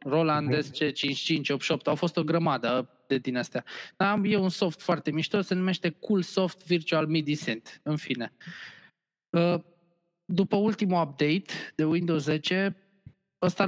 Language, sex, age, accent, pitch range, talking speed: Romanian, male, 20-39, native, 135-175 Hz, 135 wpm